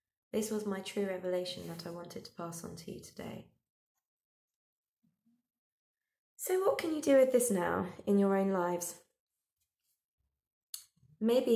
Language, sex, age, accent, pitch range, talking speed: English, female, 20-39, British, 180-210 Hz, 140 wpm